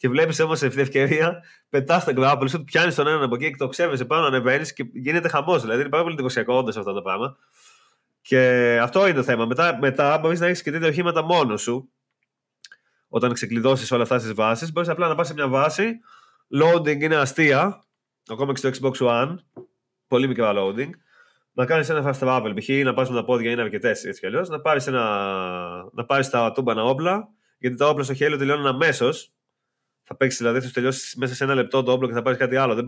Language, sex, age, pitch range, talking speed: Greek, male, 20-39, 130-165 Hz, 210 wpm